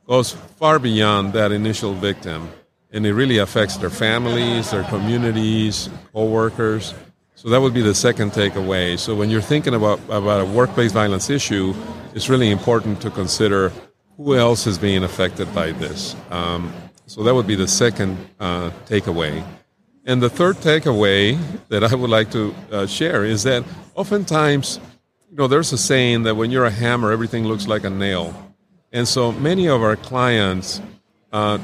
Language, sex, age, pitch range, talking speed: English, male, 50-69, 100-125 Hz, 170 wpm